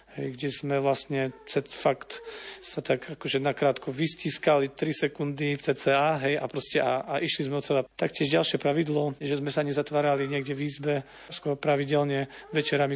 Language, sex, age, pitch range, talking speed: Slovak, male, 40-59, 135-150 Hz, 155 wpm